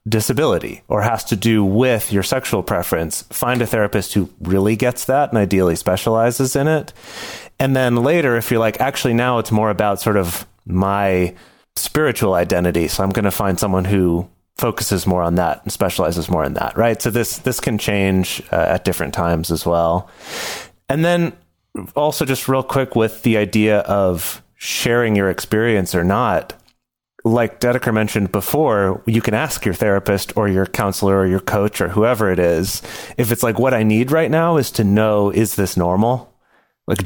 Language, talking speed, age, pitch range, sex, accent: English, 185 wpm, 30-49, 95-115 Hz, male, American